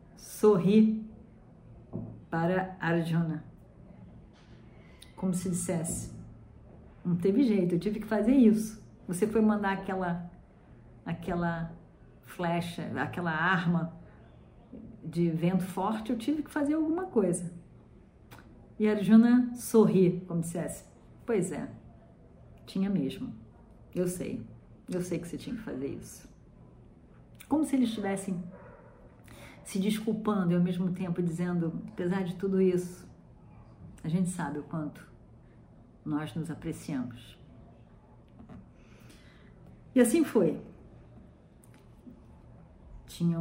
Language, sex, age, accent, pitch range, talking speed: Portuguese, female, 50-69, Brazilian, 170-215 Hz, 110 wpm